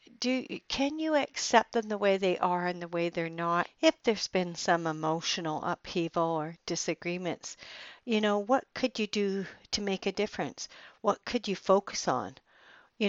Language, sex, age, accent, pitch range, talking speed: English, female, 60-79, American, 185-240 Hz, 175 wpm